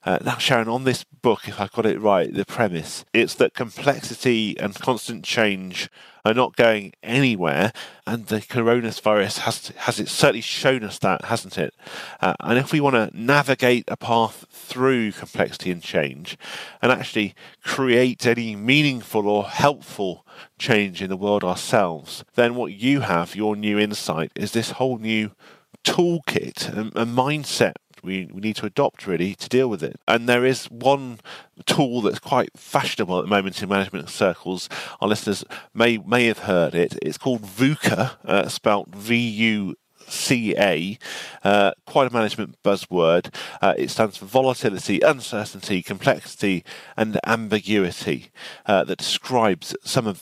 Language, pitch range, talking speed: English, 100-125 Hz, 160 wpm